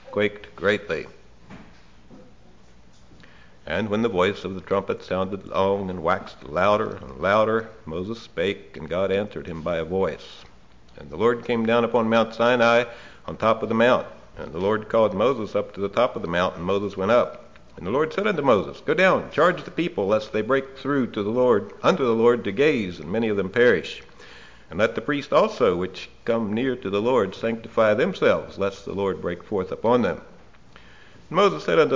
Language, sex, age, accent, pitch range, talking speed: English, male, 60-79, American, 90-120 Hz, 200 wpm